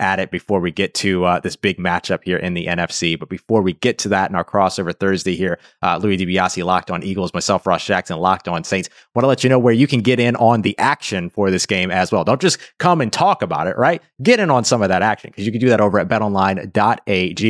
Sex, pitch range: male, 100-130 Hz